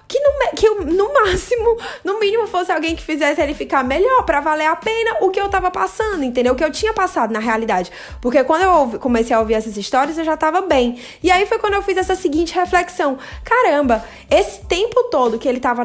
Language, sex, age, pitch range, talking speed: Portuguese, female, 20-39, 250-385 Hz, 220 wpm